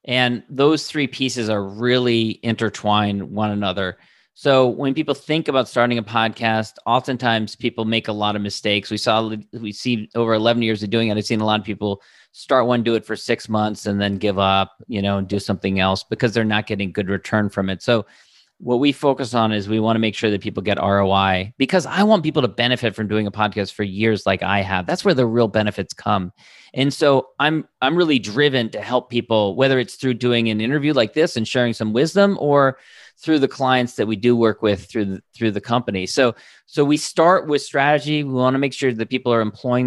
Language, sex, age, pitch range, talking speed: English, male, 40-59, 105-125 Hz, 225 wpm